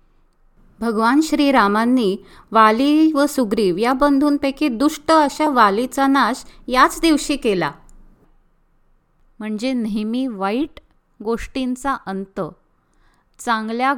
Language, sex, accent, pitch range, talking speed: Marathi, female, native, 225-290 Hz, 90 wpm